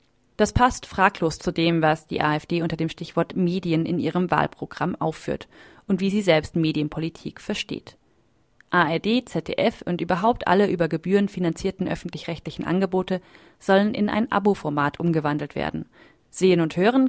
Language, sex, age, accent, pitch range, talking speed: German, female, 30-49, German, 165-205 Hz, 145 wpm